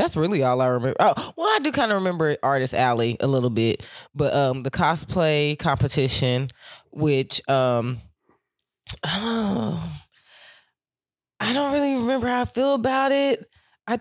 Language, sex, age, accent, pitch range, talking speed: English, female, 20-39, American, 140-180 Hz, 150 wpm